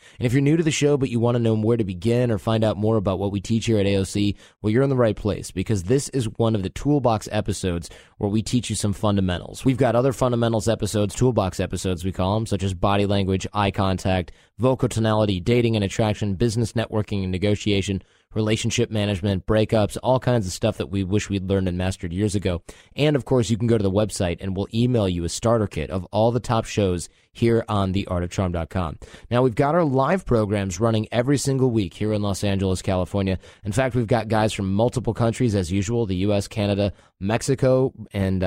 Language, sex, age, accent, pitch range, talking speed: English, male, 20-39, American, 95-115 Hz, 220 wpm